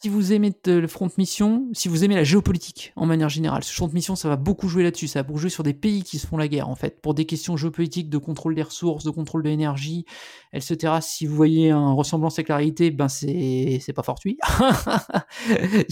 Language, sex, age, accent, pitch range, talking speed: French, male, 30-49, French, 150-175 Hz, 240 wpm